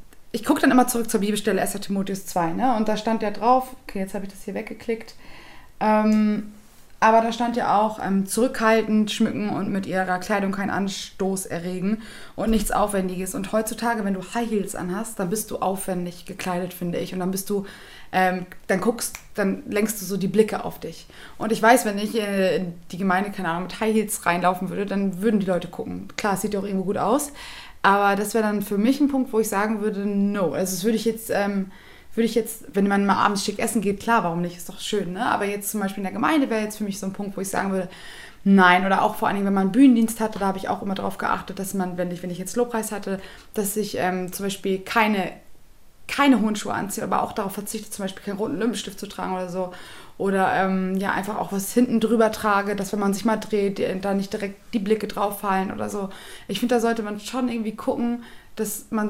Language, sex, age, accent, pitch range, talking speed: German, female, 20-39, German, 190-225 Hz, 240 wpm